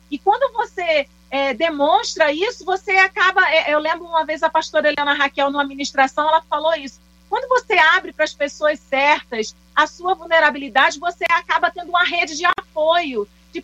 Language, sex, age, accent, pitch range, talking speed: Portuguese, female, 40-59, Brazilian, 295-355 Hz, 175 wpm